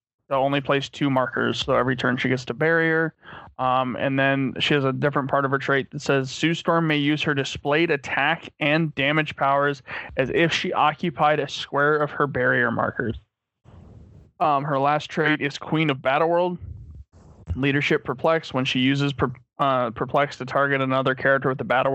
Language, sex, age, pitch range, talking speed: English, male, 20-39, 130-155 Hz, 190 wpm